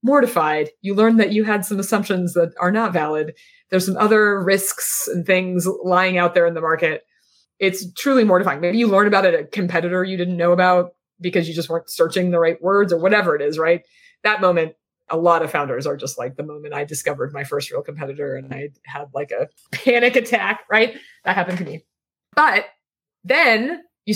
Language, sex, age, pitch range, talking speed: English, female, 30-49, 165-225 Hz, 205 wpm